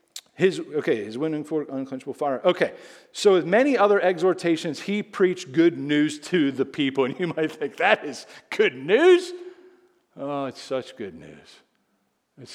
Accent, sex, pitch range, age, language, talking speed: American, male, 120-165 Hz, 40-59, English, 160 wpm